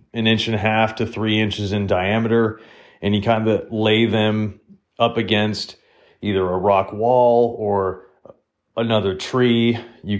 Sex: male